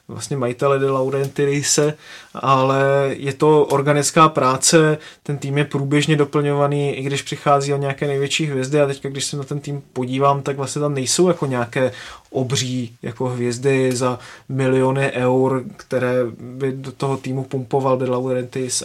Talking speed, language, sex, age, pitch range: 155 wpm, Czech, male, 20-39, 130-145 Hz